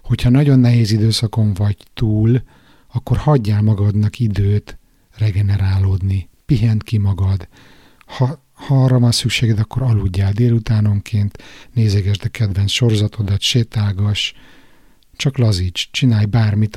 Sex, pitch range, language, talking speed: male, 100-120 Hz, Hungarian, 110 wpm